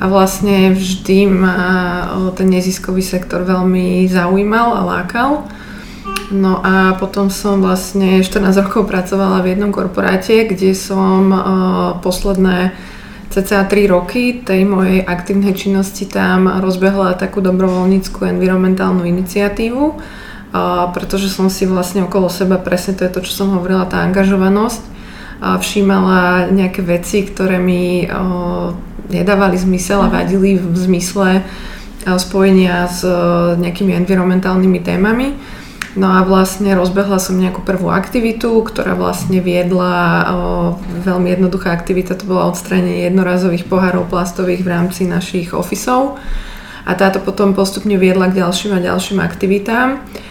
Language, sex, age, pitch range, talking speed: Slovak, female, 20-39, 185-195 Hz, 125 wpm